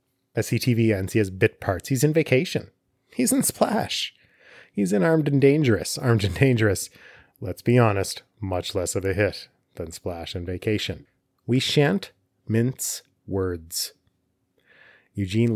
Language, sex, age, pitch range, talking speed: English, male, 30-49, 100-125 Hz, 145 wpm